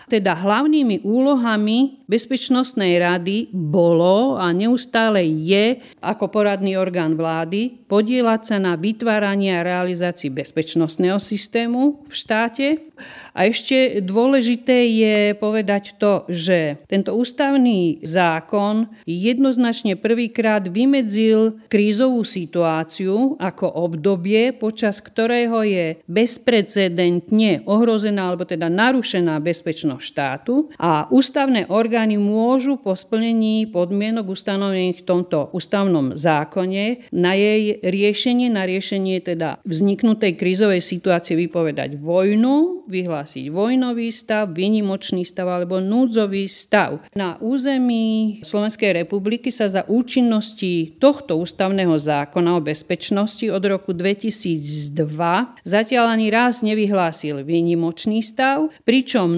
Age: 50-69